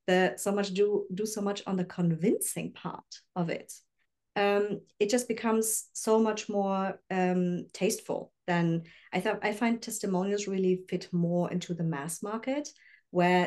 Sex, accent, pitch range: female, German, 180-215 Hz